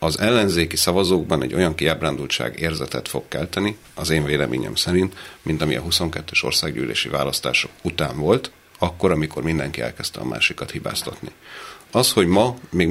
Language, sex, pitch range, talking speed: Hungarian, male, 80-95 Hz, 150 wpm